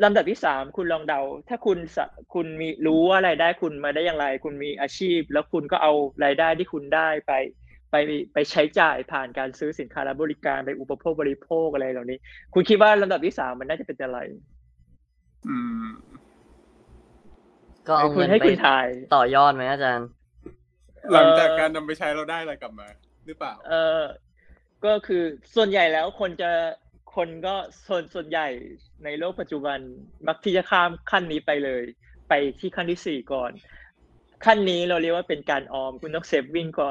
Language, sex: Thai, male